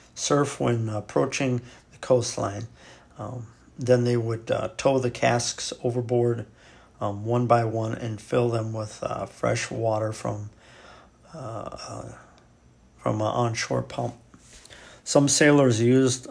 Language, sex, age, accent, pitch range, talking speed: English, male, 50-69, American, 110-125 Hz, 125 wpm